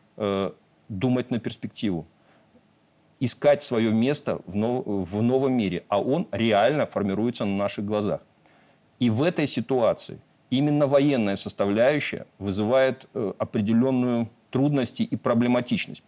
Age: 50-69